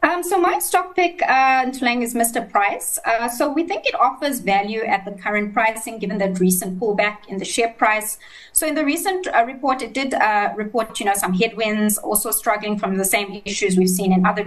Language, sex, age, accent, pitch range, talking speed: English, female, 20-39, South African, 190-240 Hz, 225 wpm